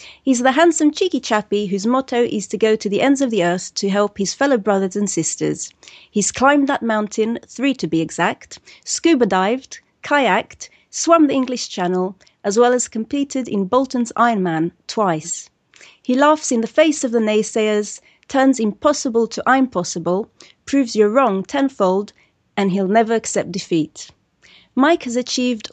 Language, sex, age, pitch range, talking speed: English, female, 30-49, 195-265 Hz, 170 wpm